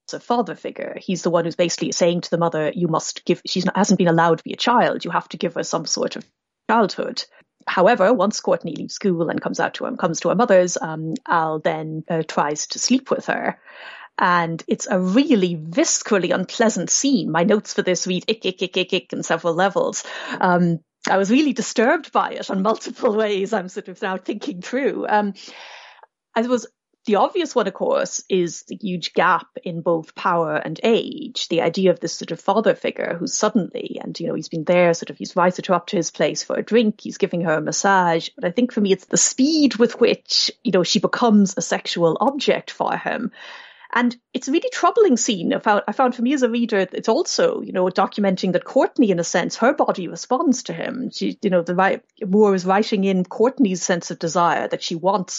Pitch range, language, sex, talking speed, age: 175-230 Hz, English, female, 220 wpm, 30-49